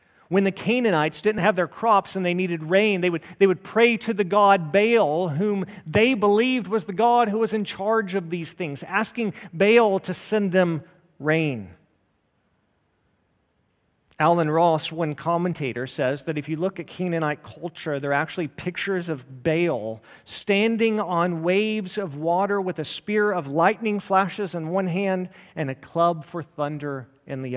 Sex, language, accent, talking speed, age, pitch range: male, English, American, 170 wpm, 40-59, 145-205 Hz